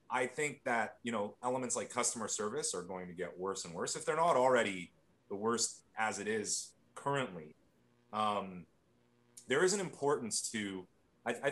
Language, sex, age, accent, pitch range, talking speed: English, male, 30-49, American, 100-140 Hz, 175 wpm